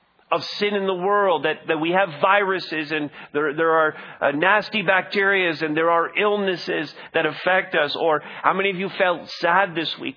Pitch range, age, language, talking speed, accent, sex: 145-185 Hz, 40-59, English, 195 wpm, American, male